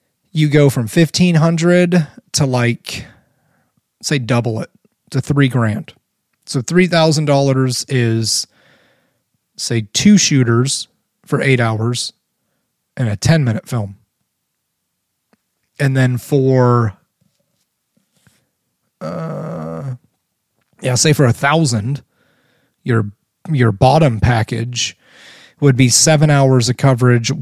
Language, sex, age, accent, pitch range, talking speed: English, male, 30-49, American, 120-145 Hz, 105 wpm